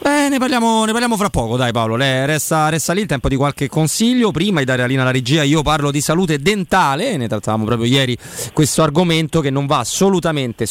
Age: 30-49